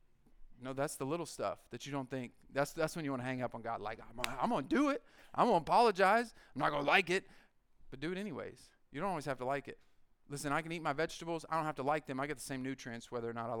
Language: English